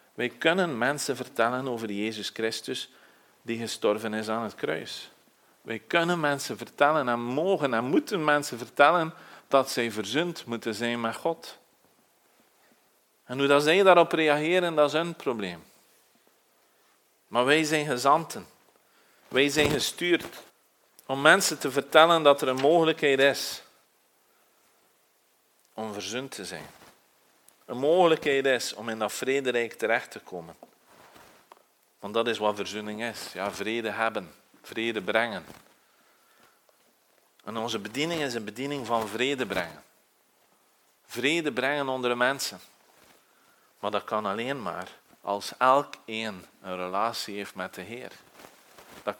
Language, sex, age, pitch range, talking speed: Dutch, male, 40-59, 110-145 Hz, 135 wpm